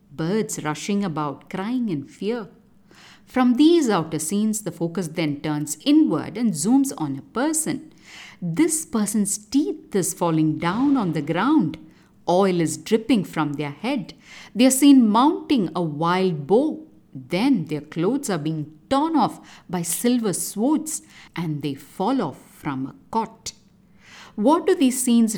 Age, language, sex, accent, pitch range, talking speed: 50-69, English, female, Indian, 160-260 Hz, 150 wpm